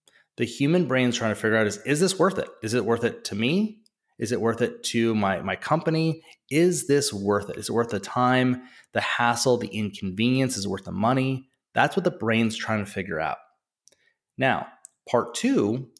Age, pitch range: 30-49, 110-140 Hz